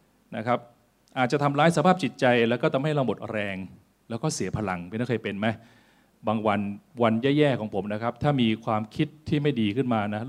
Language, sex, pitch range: Thai, male, 105-135 Hz